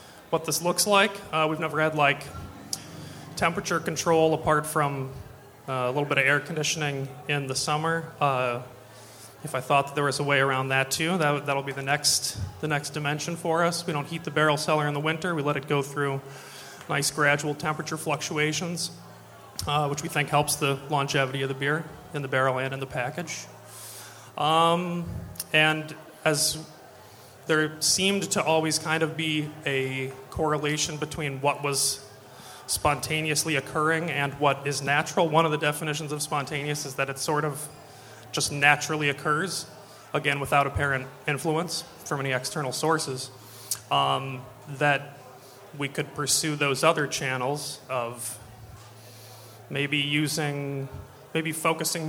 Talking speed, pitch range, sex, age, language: 160 wpm, 135-155 Hz, male, 30-49, English